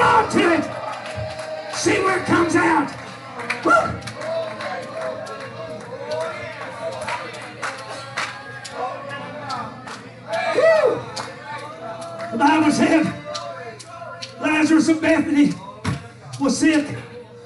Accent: American